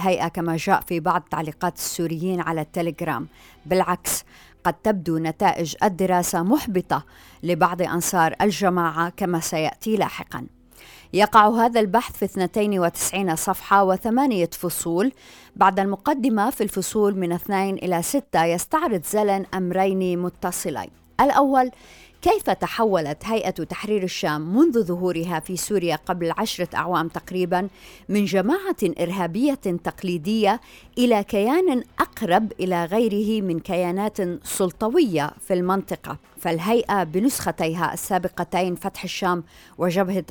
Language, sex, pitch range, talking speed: Arabic, female, 170-210 Hz, 110 wpm